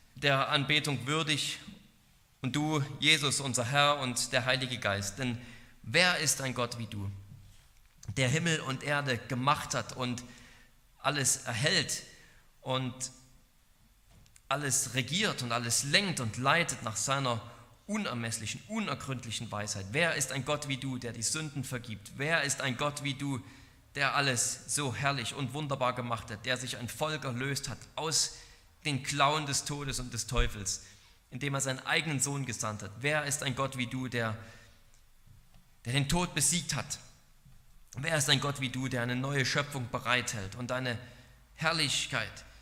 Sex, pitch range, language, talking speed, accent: male, 120-145 Hz, German, 160 wpm, German